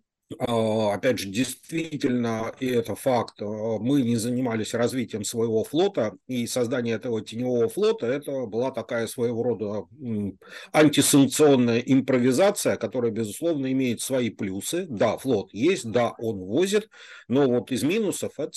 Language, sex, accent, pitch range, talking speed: Russian, male, native, 110-130 Hz, 130 wpm